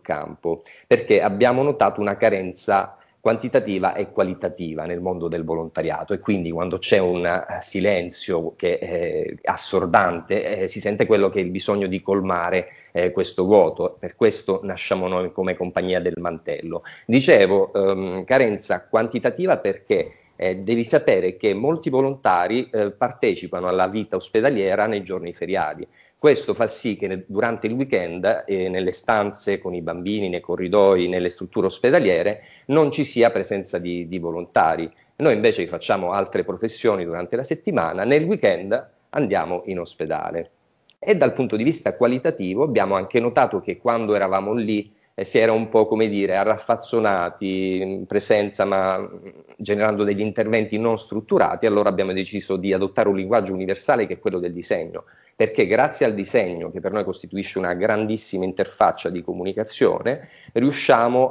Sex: male